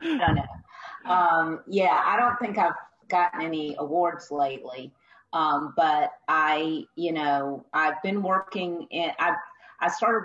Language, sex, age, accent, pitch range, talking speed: English, female, 40-59, American, 150-175 Hz, 130 wpm